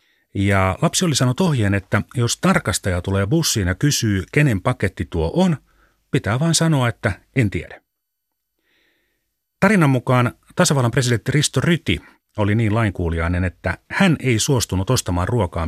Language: Finnish